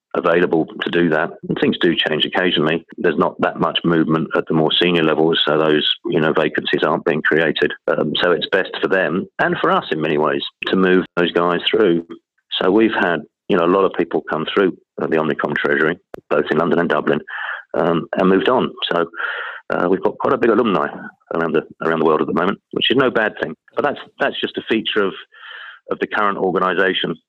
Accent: British